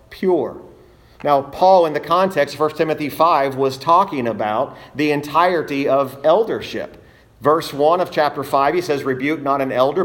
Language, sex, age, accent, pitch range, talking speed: English, male, 40-59, American, 120-150 Hz, 165 wpm